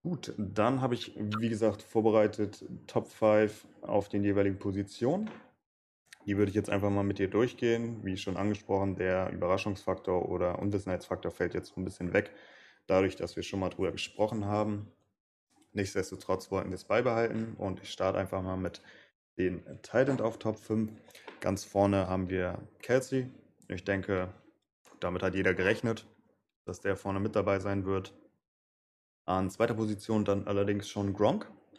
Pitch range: 95-105 Hz